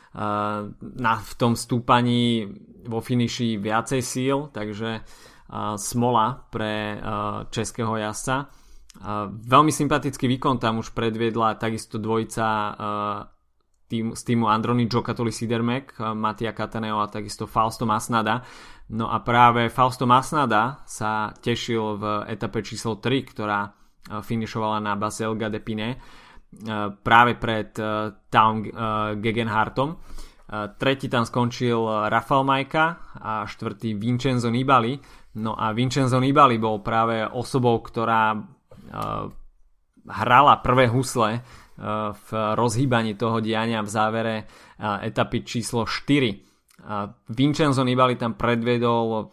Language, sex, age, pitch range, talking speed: Slovak, male, 20-39, 110-120 Hz, 120 wpm